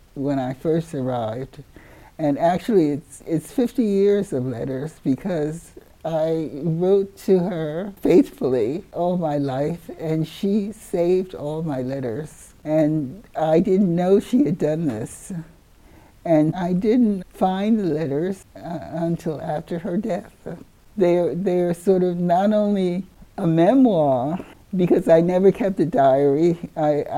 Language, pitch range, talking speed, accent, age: French, 150-195 Hz, 135 wpm, American, 60-79